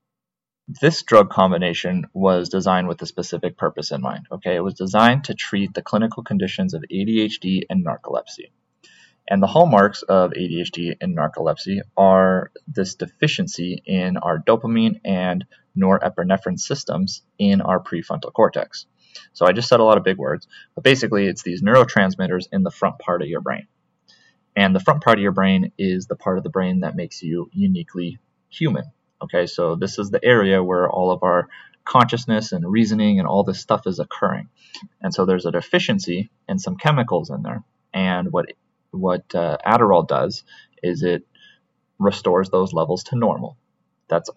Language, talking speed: English, 170 wpm